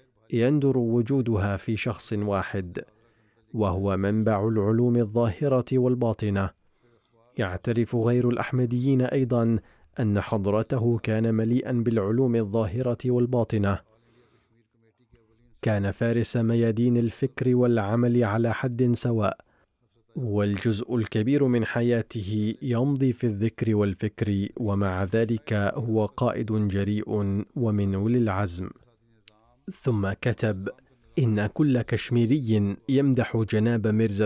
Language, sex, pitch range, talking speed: Arabic, male, 105-120 Hz, 90 wpm